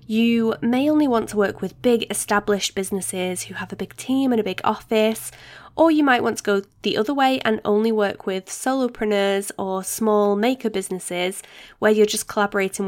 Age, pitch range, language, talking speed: 10-29, 195-250 Hz, English, 190 wpm